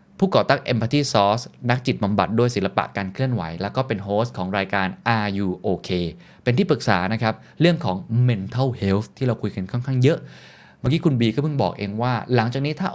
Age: 20-39